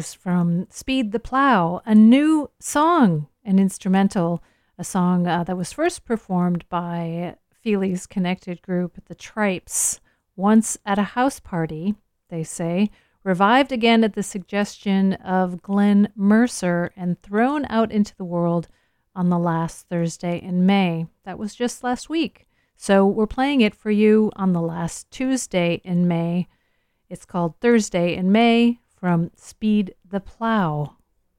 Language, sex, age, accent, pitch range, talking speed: English, female, 40-59, American, 170-210 Hz, 145 wpm